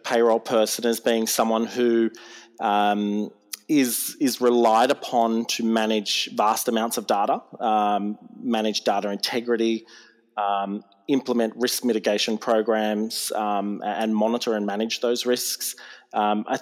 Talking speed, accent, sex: 125 wpm, Australian, male